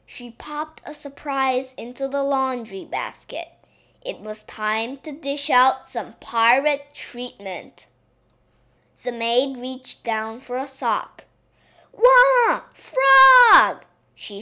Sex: female